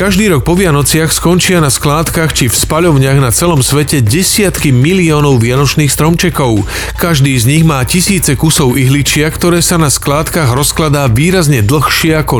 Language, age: Slovak, 40-59